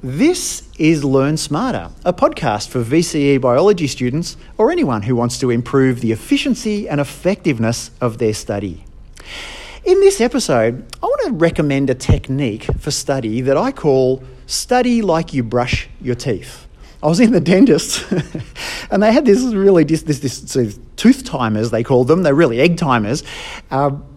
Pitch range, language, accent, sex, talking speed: 120-165 Hz, English, Australian, male, 155 wpm